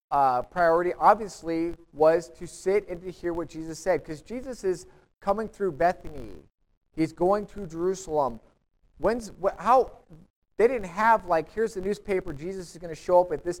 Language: English